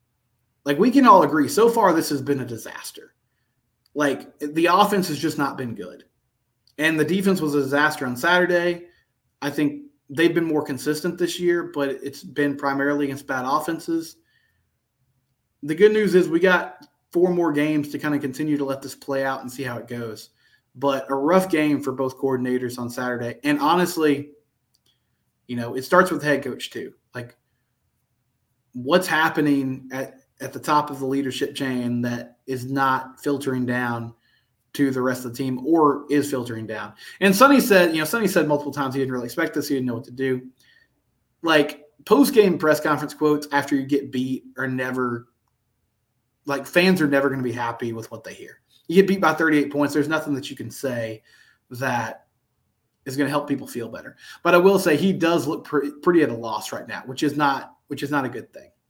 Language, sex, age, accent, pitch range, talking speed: English, male, 20-39, American, 125-155 Hz, 200 wpm